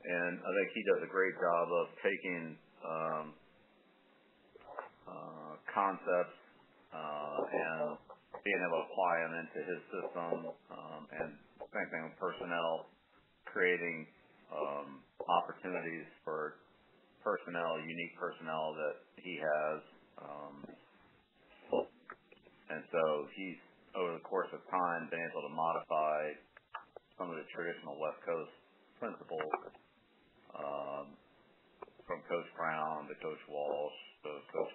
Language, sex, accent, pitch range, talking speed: English, male, American, 75-85 Hz, 115 wpm